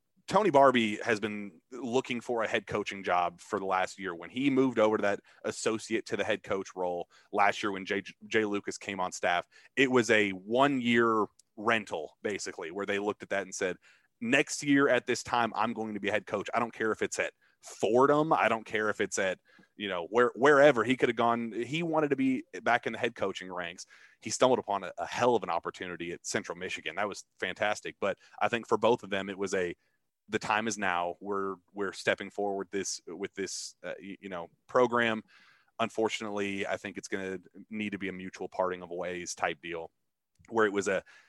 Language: English